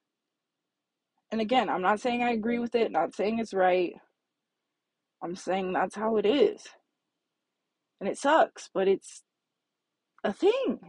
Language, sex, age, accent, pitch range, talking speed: English, female, 20-39, American, 205-255 Hz, 145 wpm